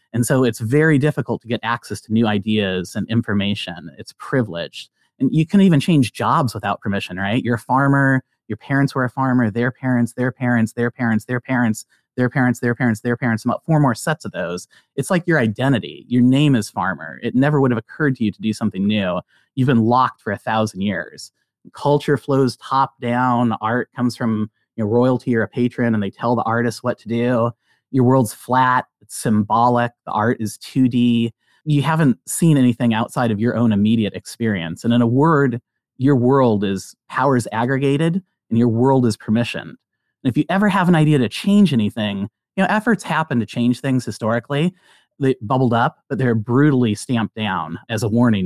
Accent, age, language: American, 30-49, English